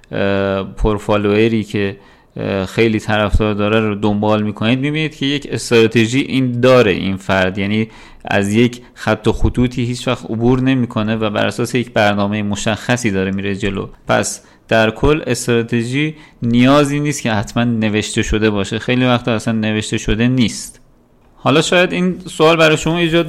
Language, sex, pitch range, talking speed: Persian, male, 105-135 Hz, 150 wpm